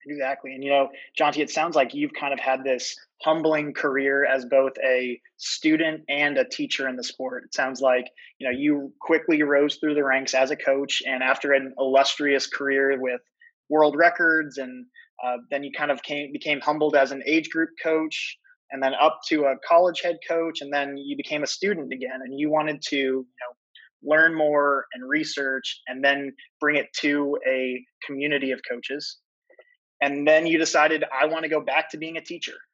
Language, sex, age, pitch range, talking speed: English, male, 20-39, 135-155 Hz, 190 wpm